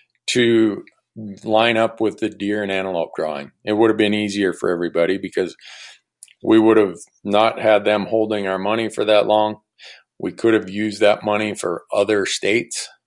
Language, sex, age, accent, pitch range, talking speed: English, male, 40-59, American, 105-120 Hz, 175 wpm